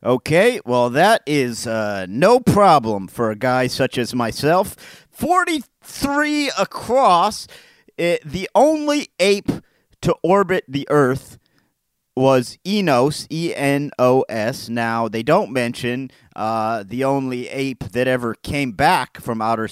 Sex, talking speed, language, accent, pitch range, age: male, 120 wpm, English, American, 120-160 Hz, 40-59